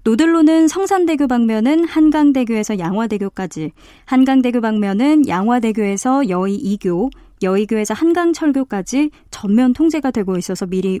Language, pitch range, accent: Korean, 200-285 Hz, native